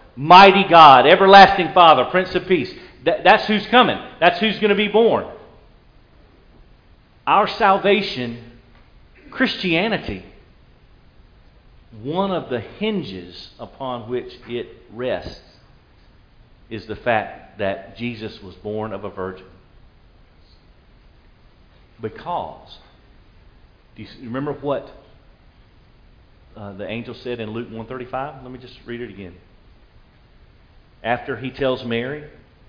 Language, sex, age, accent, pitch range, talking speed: English, male, 50-69, American, 110-180 Hz, 110 wpm